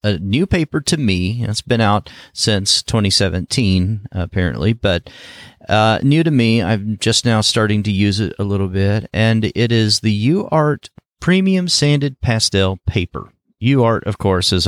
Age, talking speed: 40-59, 160 wpm